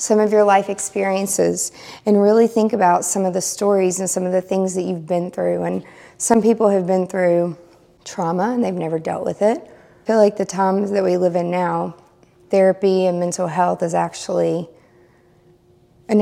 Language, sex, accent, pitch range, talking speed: English, female, American, 185-215 Hz, 190 wpm